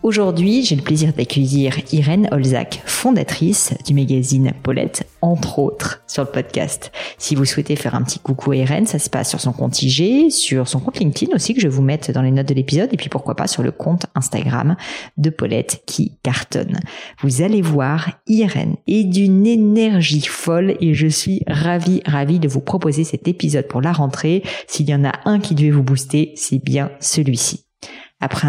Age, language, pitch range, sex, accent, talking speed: 40-59, French, 140-185 Hz, female, French, 195 wpm